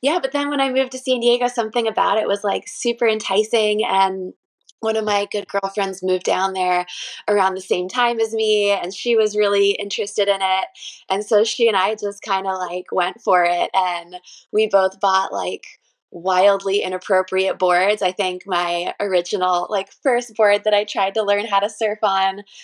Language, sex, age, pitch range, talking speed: English, female, 20-39, 190-235 Hz, 195 wpm